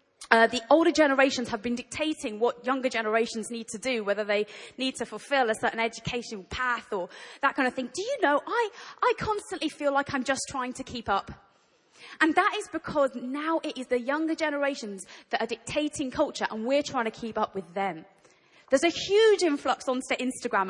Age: 20-39